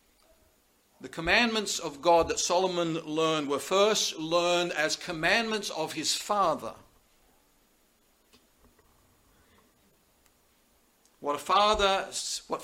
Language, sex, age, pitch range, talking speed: English, male, 50-69, 150-195 Hz, 90 wpm